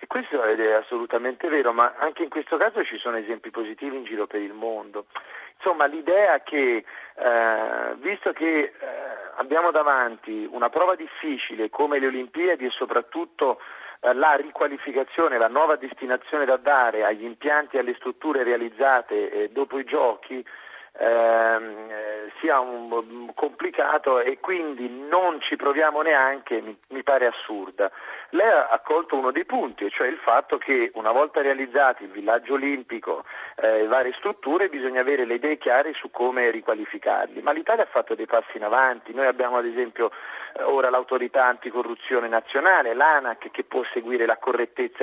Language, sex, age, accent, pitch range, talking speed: Italian, male, 40-59, native, 120-165 Hz, 155 wpm